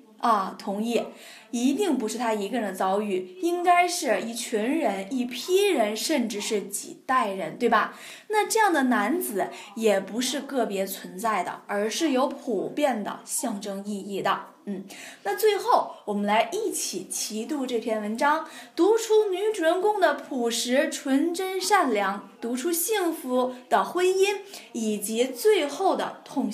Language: Chinese